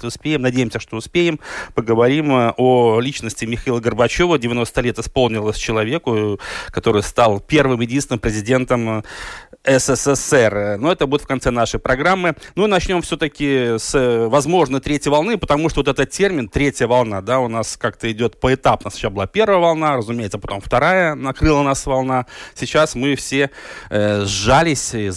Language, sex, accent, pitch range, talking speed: Russian, male, native, 115-140 Hz, 150 wpm